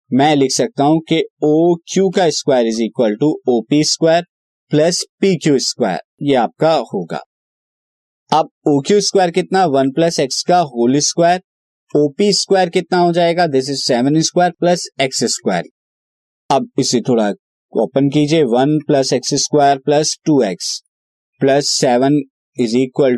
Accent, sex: native, male